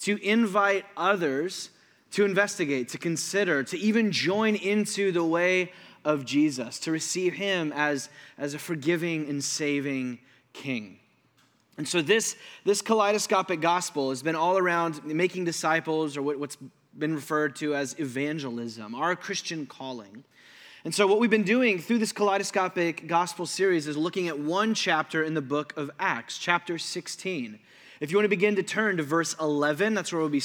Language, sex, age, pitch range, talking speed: English, male, 20-39, 150-205 Hz, 165 wpm